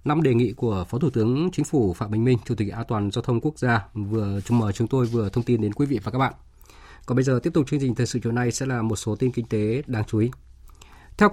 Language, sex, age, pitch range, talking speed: Vietnamese, male, 20-39, 115-150 Hz, 290 wpm